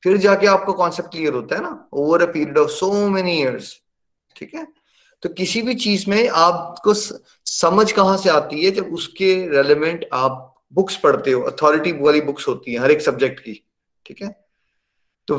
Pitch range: 150-190 Hz